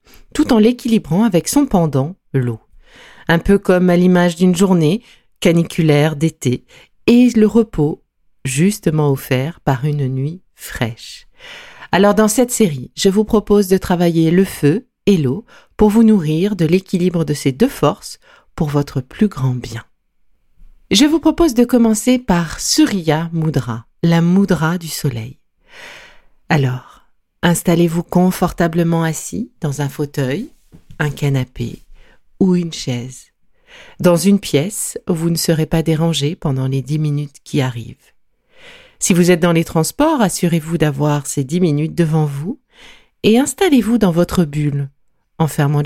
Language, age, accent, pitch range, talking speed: French, 50-69, French, 145-210 Hz, 145 wpm